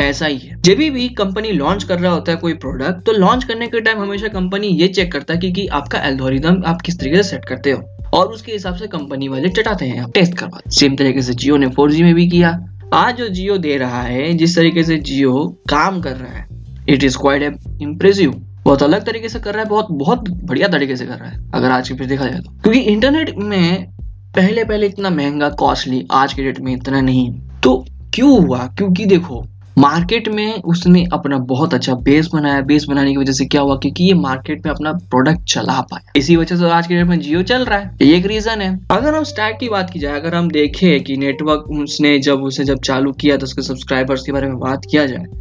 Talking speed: 170 wpm